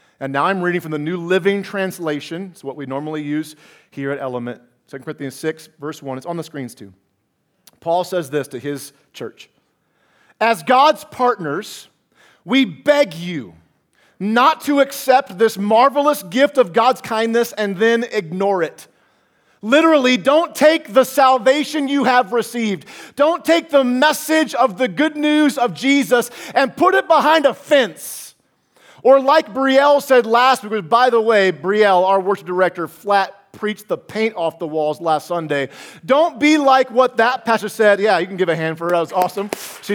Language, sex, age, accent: English, male, 40-59, American